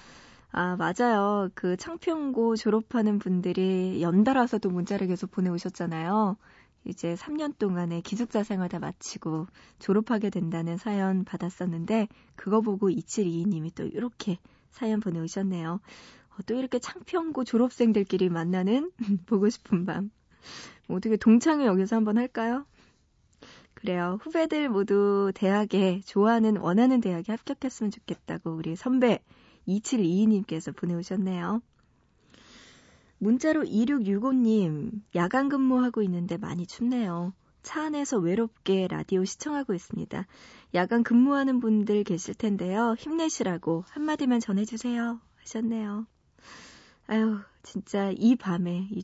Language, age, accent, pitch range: Korean, 20-39, native, 185-235 Hz